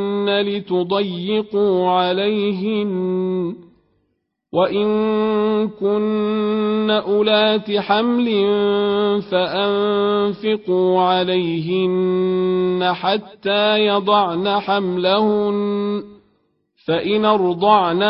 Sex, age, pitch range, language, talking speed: male, 40-59, 180-205 Hz, Arabic, 45 wpm